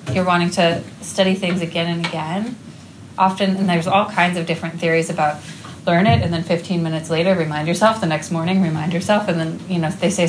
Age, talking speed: 30-49, 215 wpm